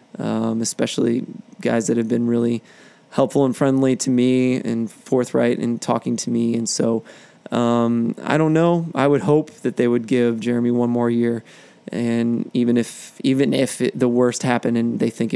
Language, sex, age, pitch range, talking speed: English, male, 20-39, 120-140 Hz, 185 wpm